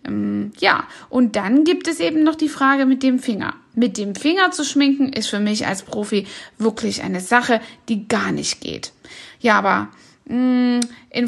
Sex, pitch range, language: female, 215-270 Hz, German